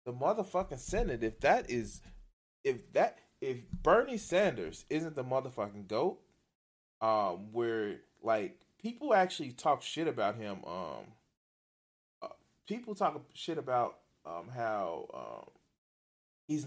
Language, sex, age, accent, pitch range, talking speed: English, male, 20-39, American, 105-135 Hz, 120 wpm